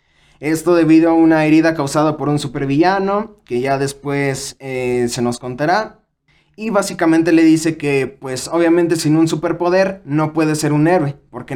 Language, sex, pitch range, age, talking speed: Spanish, male, 145-180 Hz, 20-39, 165 wpm